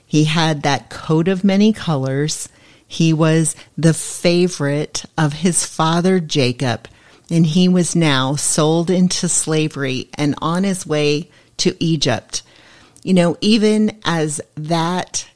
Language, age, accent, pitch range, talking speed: English, 40-59, American, 145-180 Hz, 130 wpm